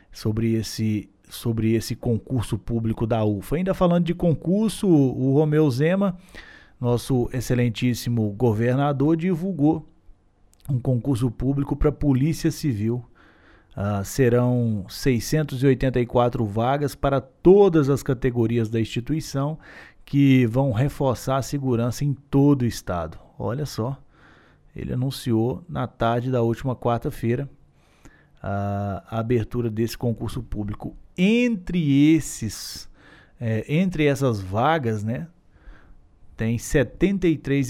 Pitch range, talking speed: 110-150 Hz, 105 wpm